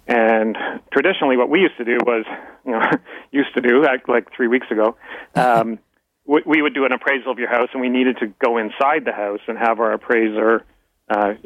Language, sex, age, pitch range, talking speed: English, male, 40-59, 110-130 Hz, 210 wpm